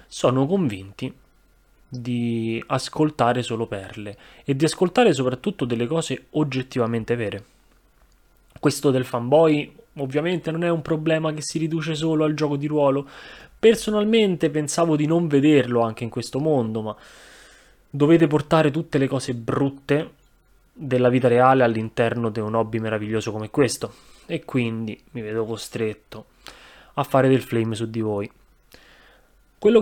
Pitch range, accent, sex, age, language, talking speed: 115-150 Hz, native, male, 20-39, Italian, 140 wpm